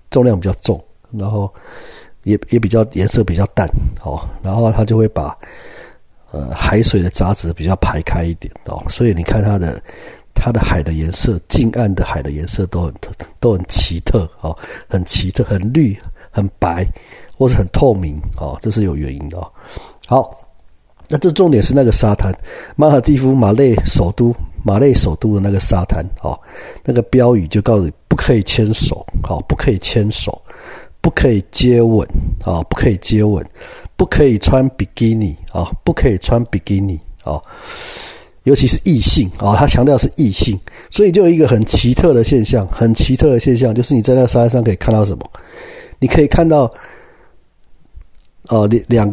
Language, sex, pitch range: Chinese, male, 90-120 Hz